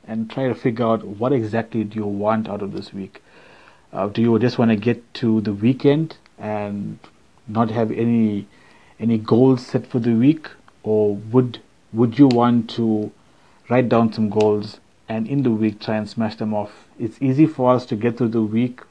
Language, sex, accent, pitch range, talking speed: English, male, Indian, 110-125 Hz, 195 wpm